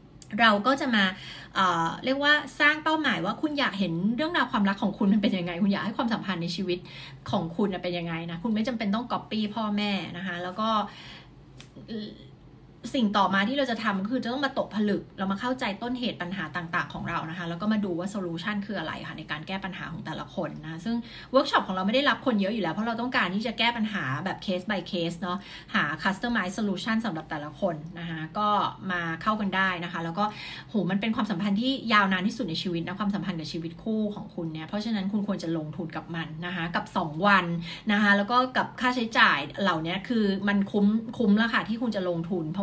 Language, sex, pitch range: Thai, female, 175-220 Hz